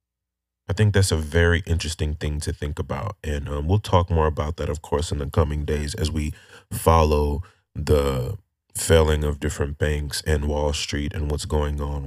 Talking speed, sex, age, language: 190 wpm, male, 30-49, English